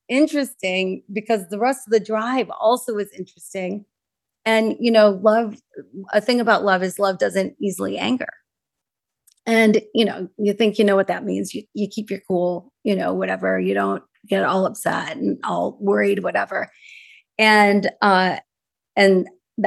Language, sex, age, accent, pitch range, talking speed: English, female, 30-49, American, 200-250 Hz, 160 wpm